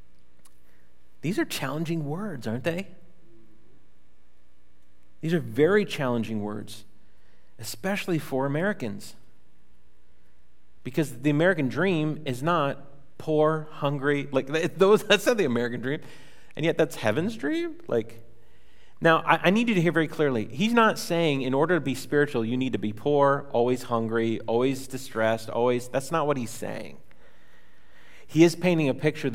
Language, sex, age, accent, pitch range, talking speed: English, male, 40-59, American, 100-150 Hz, 145 wpm